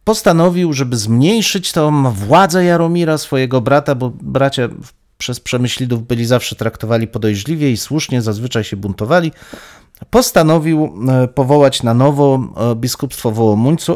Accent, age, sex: native, 40-59, male